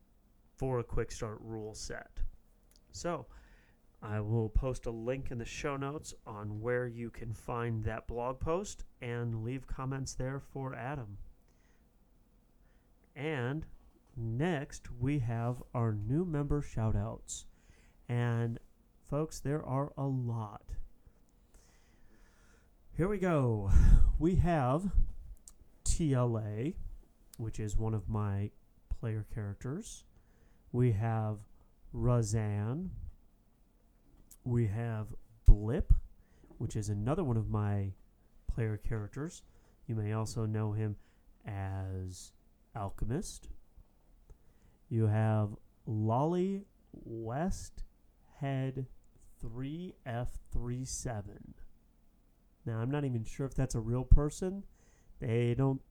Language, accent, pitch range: English, American, 105-130 Hz